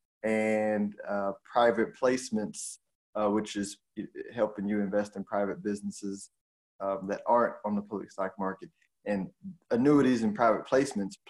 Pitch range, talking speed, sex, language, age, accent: 100-115 Hz, 140 wpm, male, English, 20-39, American